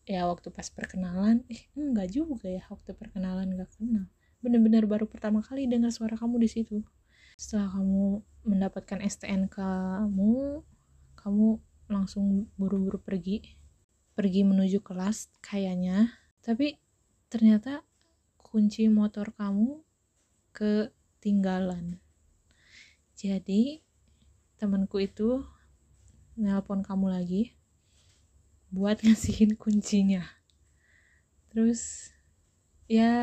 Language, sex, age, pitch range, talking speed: Indonesian, female, 20-39, 185-215 Hz, 90 wpm